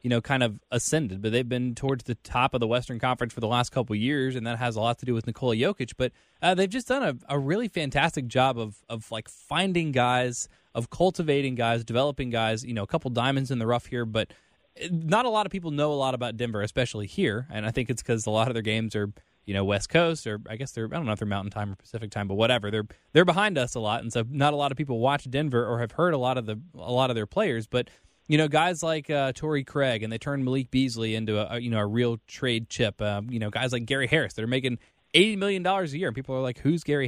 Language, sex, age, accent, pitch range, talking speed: English, male, 20-39, American, 115-145 Hz, 280 wpm